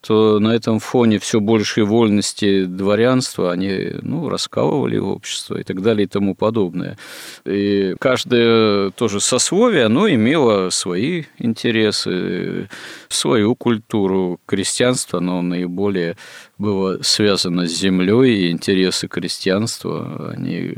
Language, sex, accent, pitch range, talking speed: Russian, male, native, 95-115 Hz, 115 wpm